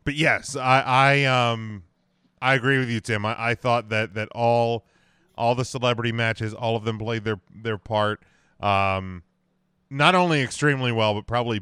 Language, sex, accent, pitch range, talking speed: English, male, American, 100-125 Hz, 175 wpm